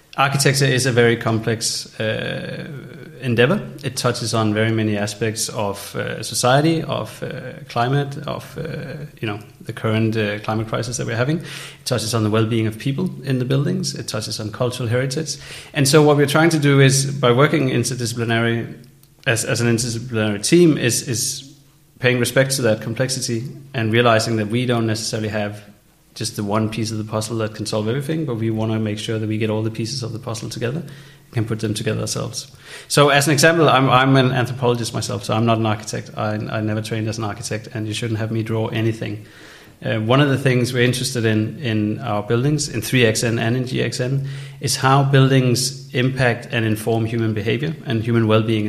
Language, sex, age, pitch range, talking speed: German, male, 30-49, 110-140 Hz, 200 wpm